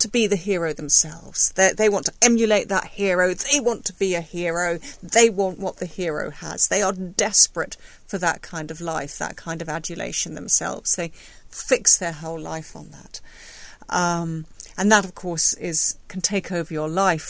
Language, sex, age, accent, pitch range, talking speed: English, female, 40-59, British, 160-190 Hz, 190 wpm